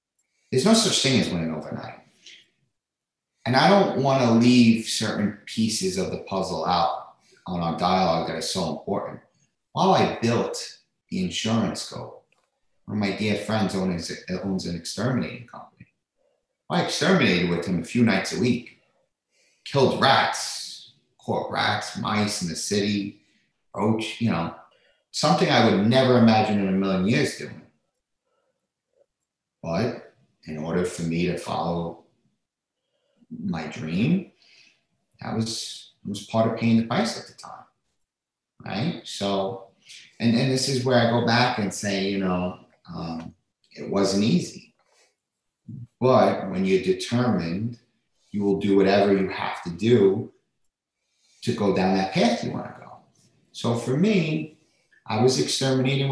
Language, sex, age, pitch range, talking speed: English, male, 30-49, 95-125 Hz, 145 wpm